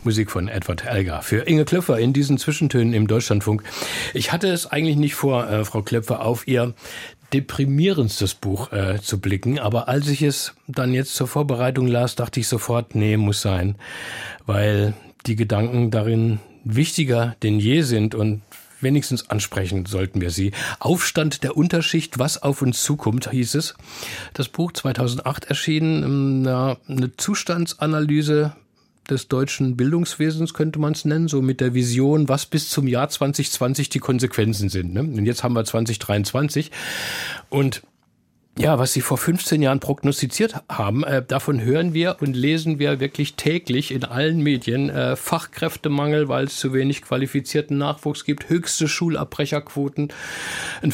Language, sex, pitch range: German, male, 115-150 Hz